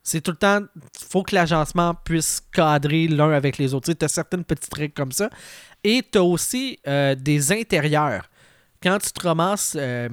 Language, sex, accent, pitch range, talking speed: French, male, Canadian, 145-180 Hz, 200 wpm